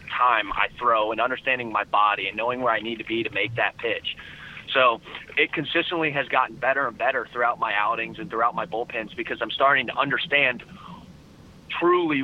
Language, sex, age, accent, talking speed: English, male, 30-49, American, 190 wpm